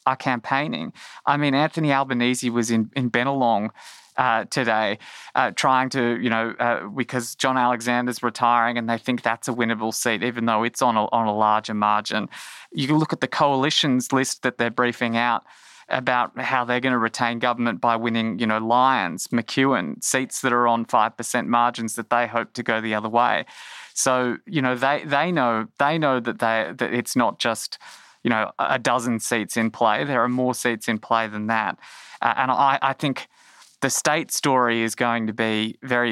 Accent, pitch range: Australian, 115-130 Hz